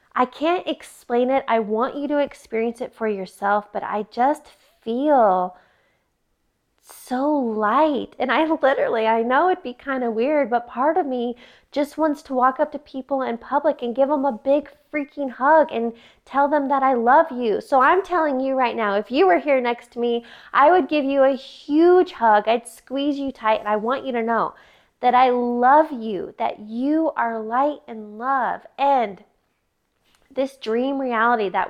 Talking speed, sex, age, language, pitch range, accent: 190 wpm, female, 20-39, English, 225-275 Hz, American